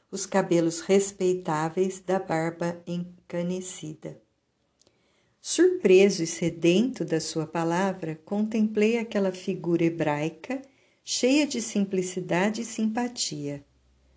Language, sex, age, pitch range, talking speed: Portuguese, female, 50-69, 165-195 Hz, 90 wpm